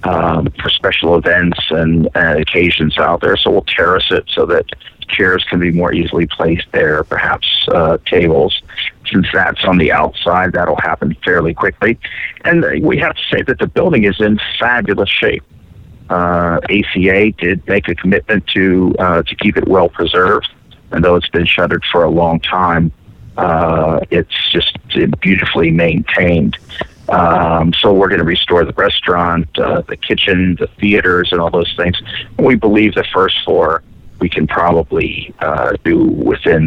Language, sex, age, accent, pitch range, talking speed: English, male, 50-69, American, 85-100 Hz, 165 wpm